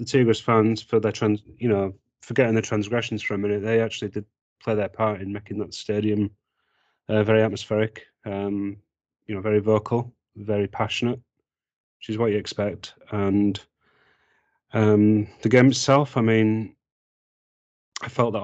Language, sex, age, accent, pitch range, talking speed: English, male, 30-49, British, 100-110 Hz, 160 wpm